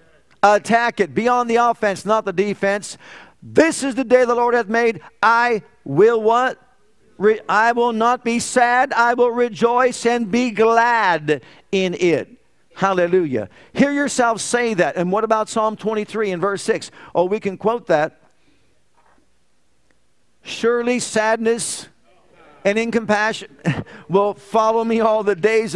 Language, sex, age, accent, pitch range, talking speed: English, male, 50-69, American, 190-235 Hz, 145 wpm